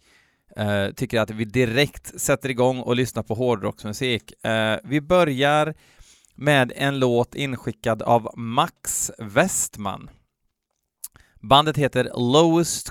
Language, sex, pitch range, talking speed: Swedish, male, 105-140 Hz, 110 wpm